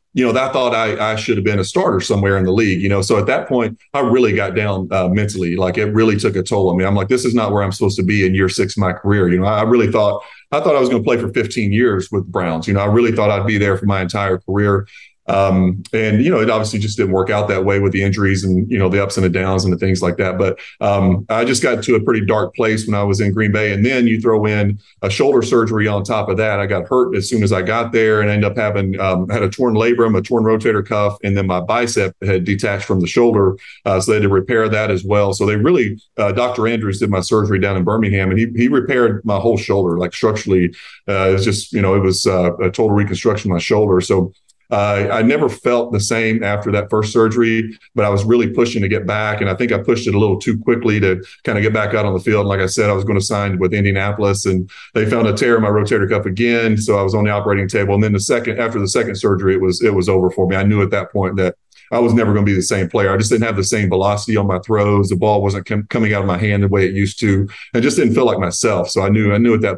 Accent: American